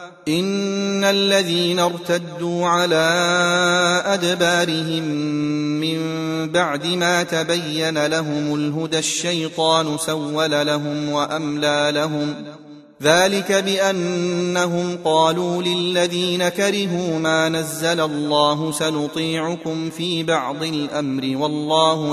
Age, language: 30-49, Arabic